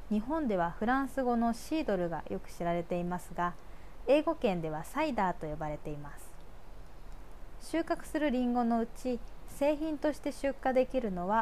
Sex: female